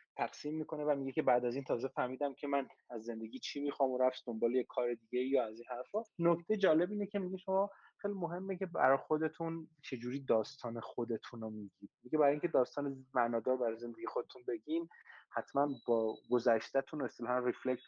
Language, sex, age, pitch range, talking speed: Persian, male, 20-39, 115-145 Hz, 205 wpm